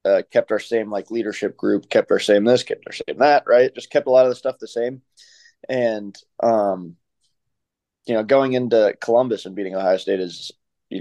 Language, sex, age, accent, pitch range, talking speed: English, male, 20-39, American, 105-125 Hz, 205 wpm